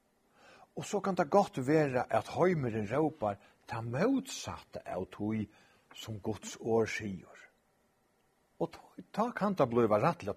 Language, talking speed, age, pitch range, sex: English, 125 wpm, 60-79, 105-145 Hz, male